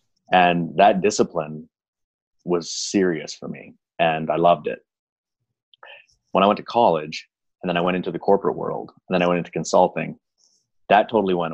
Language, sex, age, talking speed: English, male, 30-49, 170 wpm